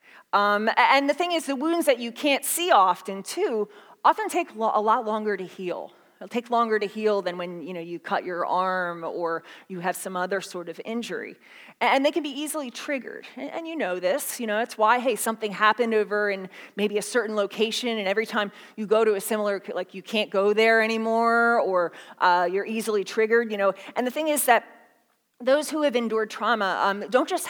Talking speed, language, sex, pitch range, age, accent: 215 wpm, English, female, 190-245 Hz, 30-49, American